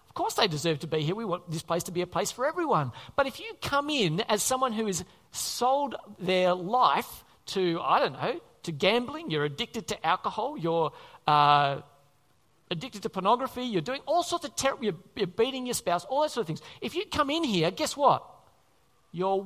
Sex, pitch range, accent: male, 180-265 Hz, Australian